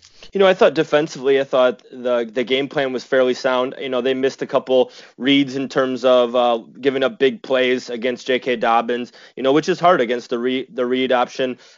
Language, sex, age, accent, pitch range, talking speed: English, male, 20-39, American, 125-140 Hz, 220 wpm